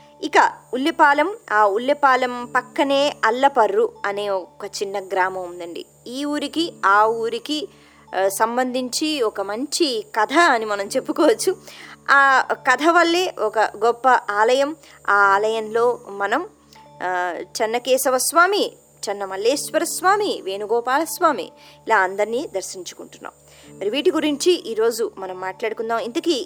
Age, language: 20-39, Telugu